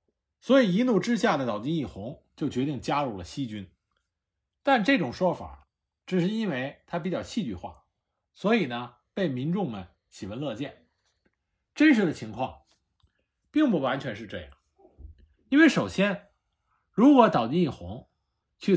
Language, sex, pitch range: Chinese, male, 125-200 Hz